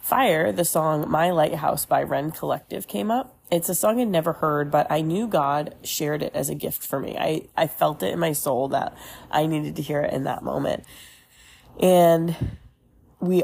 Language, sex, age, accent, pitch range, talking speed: English, female, 30-49, American, 155-175 Hz, 200 wpm